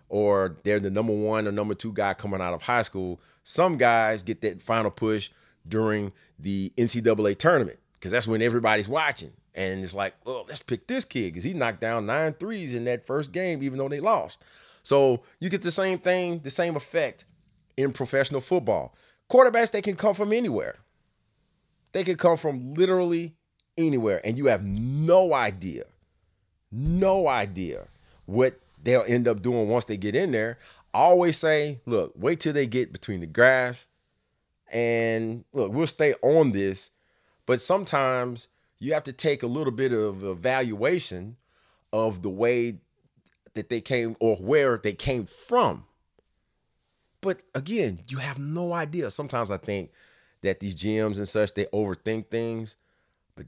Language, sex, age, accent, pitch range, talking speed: English, male, 30-49, American, 105-160 Hz, 165 wpm